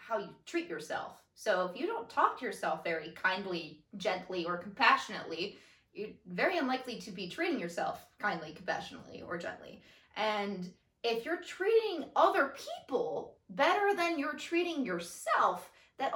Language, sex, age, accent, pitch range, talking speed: English, female, 20-39, American, 190-285 Hz, 145 wpm